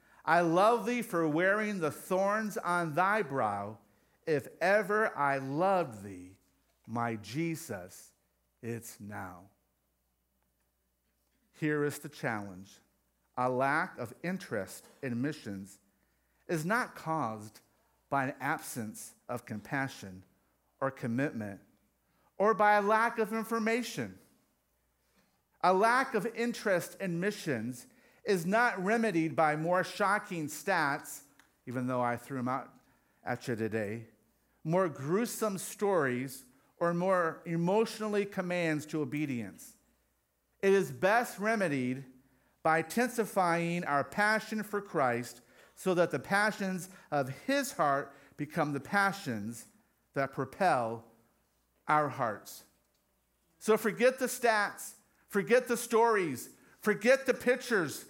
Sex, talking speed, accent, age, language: male, 115 wpm, American, 50-69, English